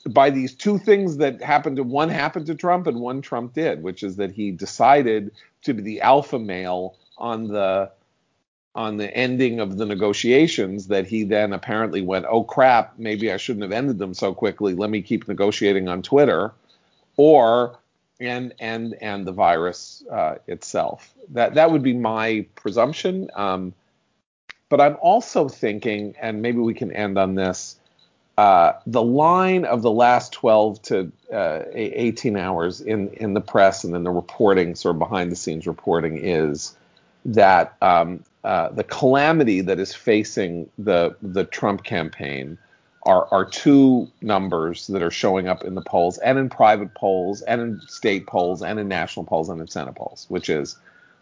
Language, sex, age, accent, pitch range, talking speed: English, male, 50-69, American, 95-125 Hz, 170 wpm